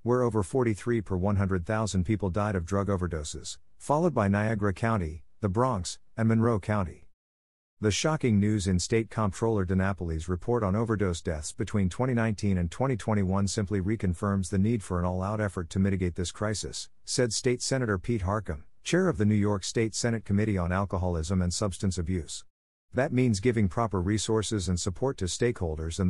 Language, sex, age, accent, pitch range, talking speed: English, male, 50-69, American, 90-115 Hz, 170 wpm